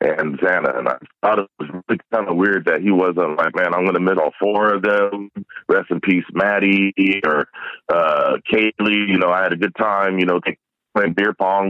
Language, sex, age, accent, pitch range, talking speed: English, male, 40-59, American, 90-105 Hz, 220 wpm